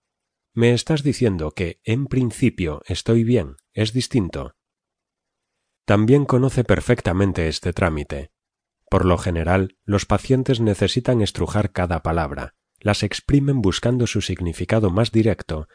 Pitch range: 90-120 Hz